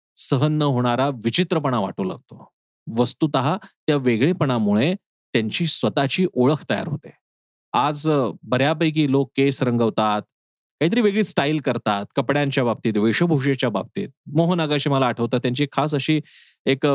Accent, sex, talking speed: native, male, 105 wpm